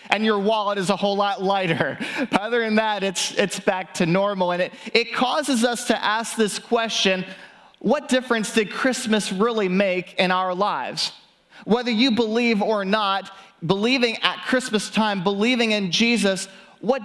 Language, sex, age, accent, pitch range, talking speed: English, male, 30-49, American, 180-210 Hz, 170 wpm